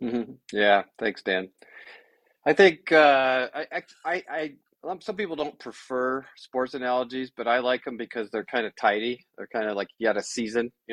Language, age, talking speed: English, 40-59, 180 wpm